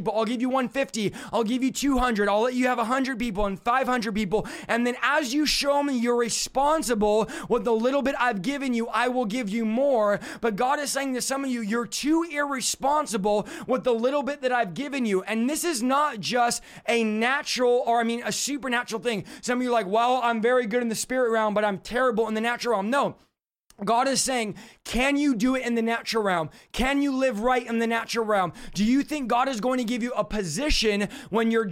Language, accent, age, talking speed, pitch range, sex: English, American, 20-39, 230 wpm, 220-255 Hz, male